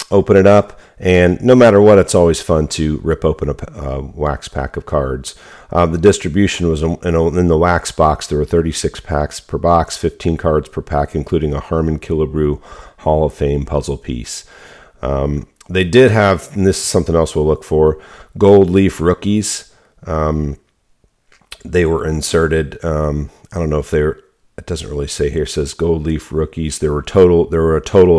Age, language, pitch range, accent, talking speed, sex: 40-59, English, 75-85 Hz, American, 185 wpm, male